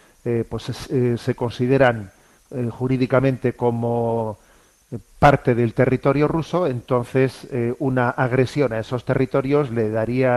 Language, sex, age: Spanish, male, 40-59